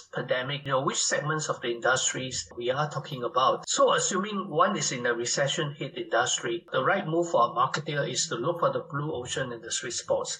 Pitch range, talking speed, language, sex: 145-180 Hz, 215 wpm, English, male